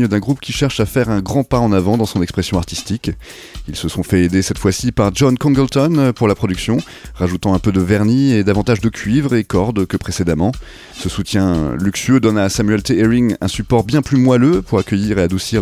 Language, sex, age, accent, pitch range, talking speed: French, male, 30-49, French, 95-125 Hz, 220 wpm